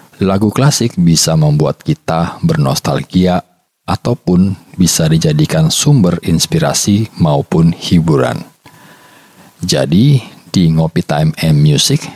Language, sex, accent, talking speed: Indonesian, male, native, 95 wpm